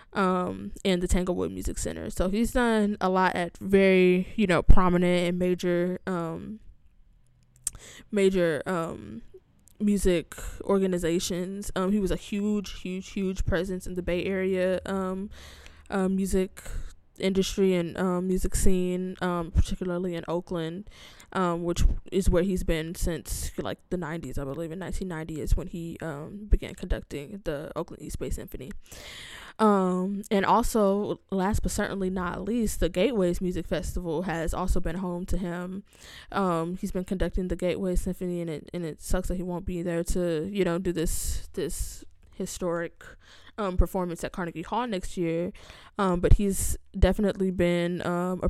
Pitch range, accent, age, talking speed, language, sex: 170-190 Hz, American, 10-29, 160 wpm, English, female